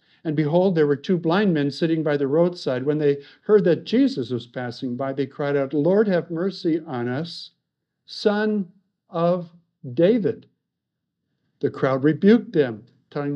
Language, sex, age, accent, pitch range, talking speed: English, male, 60-79, American, 135-170 Hz, 155 wpm